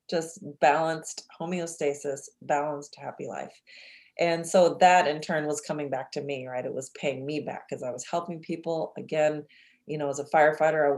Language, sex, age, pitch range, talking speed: English, female, 30-49, 145-200 Hz, 185 wpm